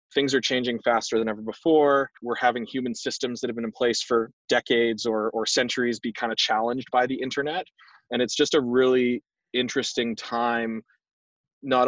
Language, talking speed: English, 180 wpm